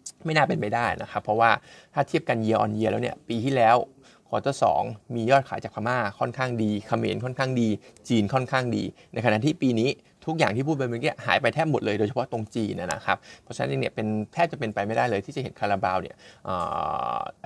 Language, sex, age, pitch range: Thai, male, 20-39, 105-130 Hz